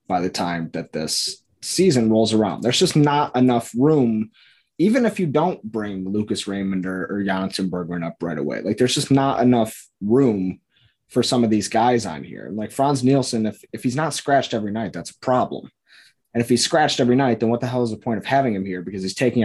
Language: English